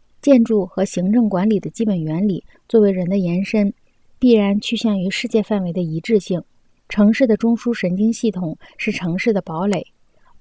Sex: female